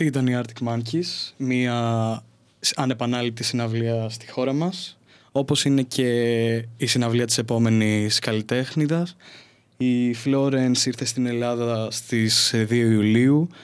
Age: 20-39